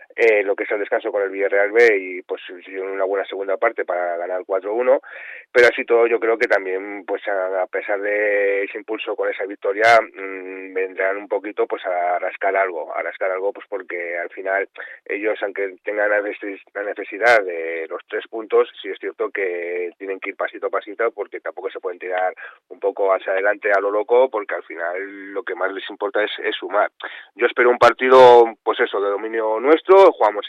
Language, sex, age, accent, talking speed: Spanish, male, 30-49, Spanish, 205 wpm